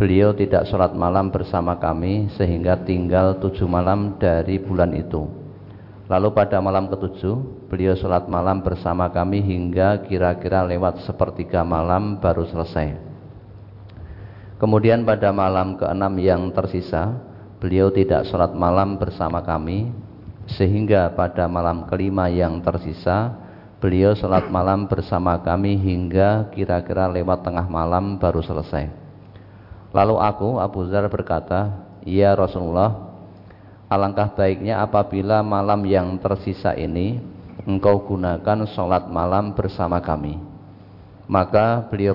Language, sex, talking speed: Indonesian, male, 115 wpm